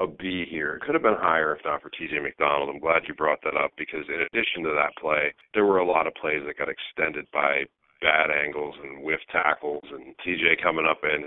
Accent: American